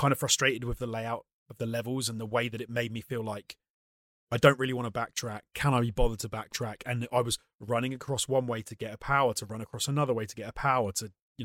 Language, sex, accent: English, male, British